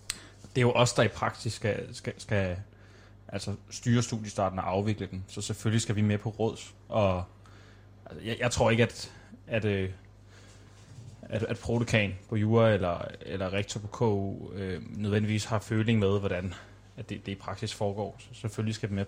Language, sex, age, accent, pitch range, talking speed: Danish, male, 20-39, native, 100-115 Hz, 180 wpm